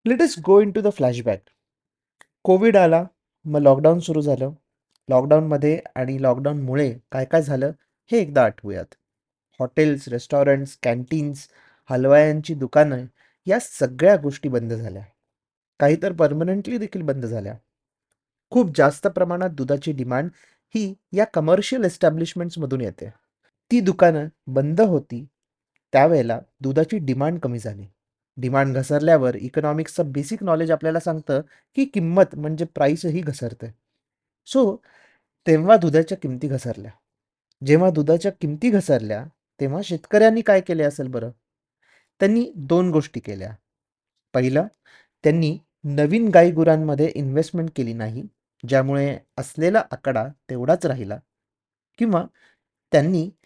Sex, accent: male, native